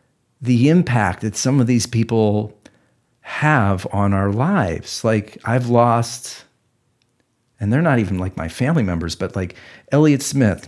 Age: 40-59